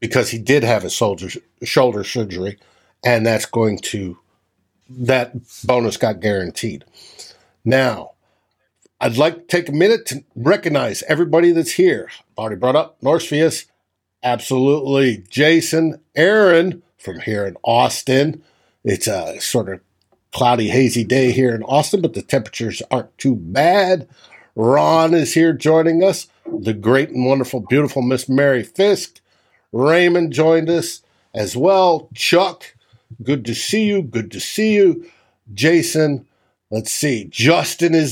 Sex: male